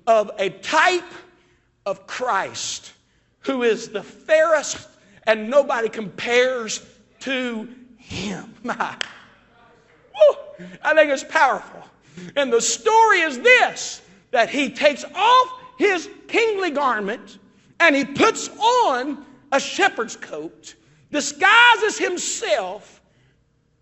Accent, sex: American, male